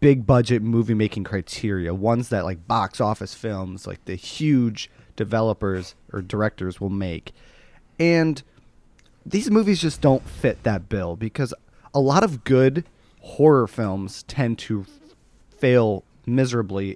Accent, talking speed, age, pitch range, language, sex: American, 135 wpm, 30-49, 100-125 Hz, English, male